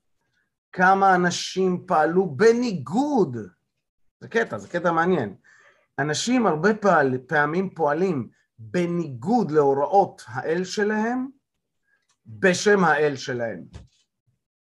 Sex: male